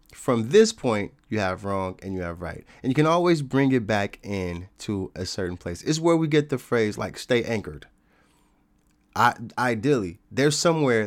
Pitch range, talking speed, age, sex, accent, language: 100-125 Hz, 190 wpm, 20-39, male, American, English